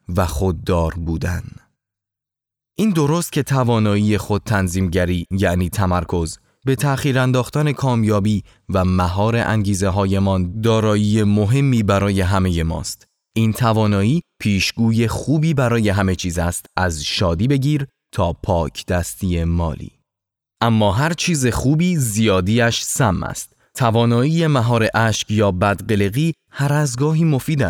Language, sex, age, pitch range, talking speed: Persian, male, 20-39, 95-125 Hz, 120 wpm